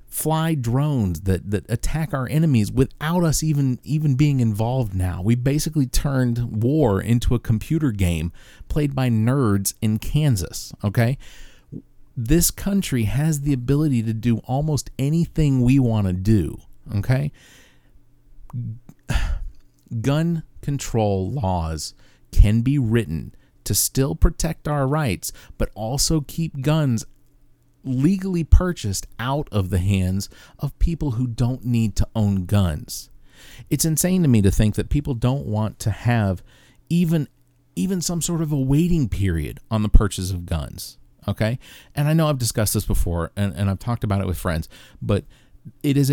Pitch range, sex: 100-145 Hz, male